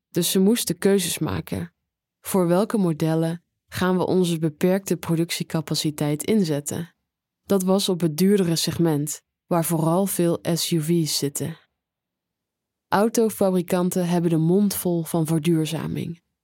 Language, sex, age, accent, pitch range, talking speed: Dutch, female, 20-39, Dutch, 160-185 Hz, 115 wpm